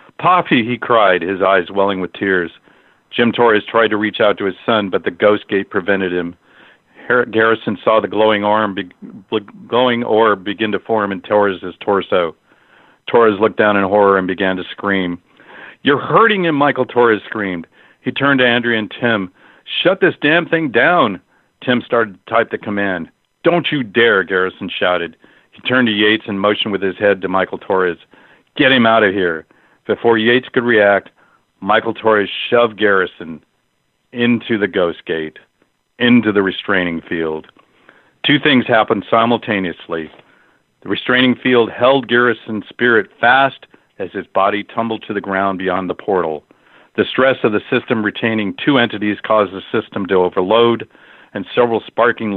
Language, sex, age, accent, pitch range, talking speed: English, male, 50-69, American, 95-115 Hz, 160 wpm